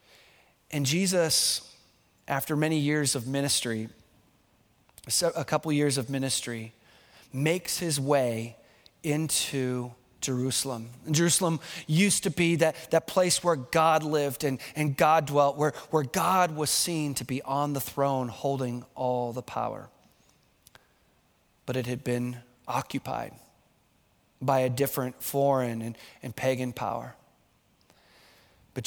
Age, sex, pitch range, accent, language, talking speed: 30-49, male, 125-165 Hz, American, English, 125 wpm